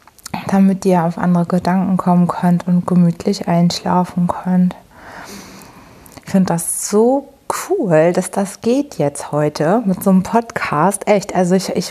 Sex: female